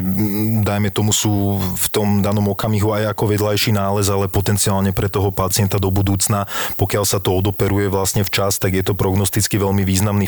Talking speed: 175 wpm